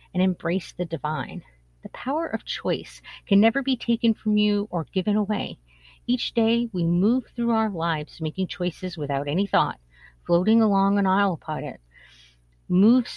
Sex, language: female, English